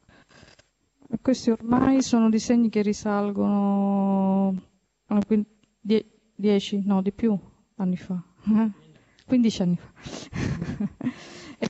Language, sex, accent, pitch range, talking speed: Italian, female, native, 195-220 Hz, 80 wpm